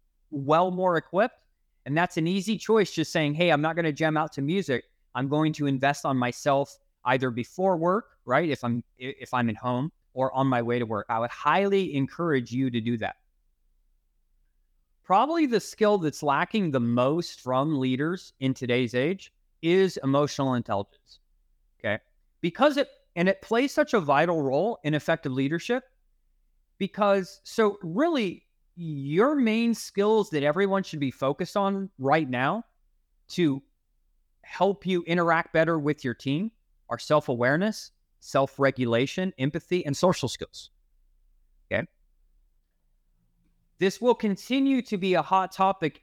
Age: 30-49